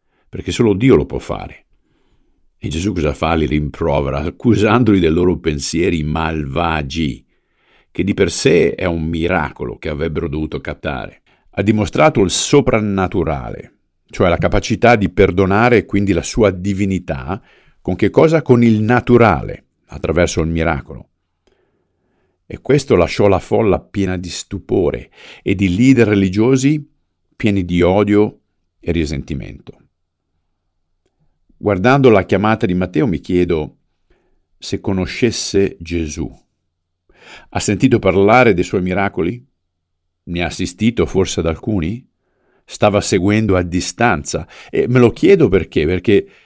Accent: native